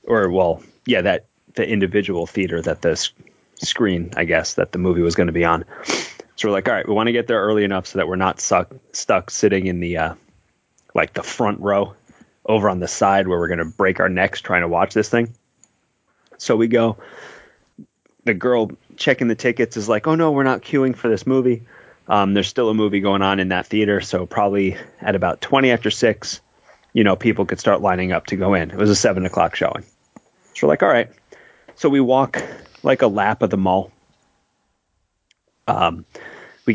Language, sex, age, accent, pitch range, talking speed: English, male, 30-49, American, 95-120 Hz, 210 wpm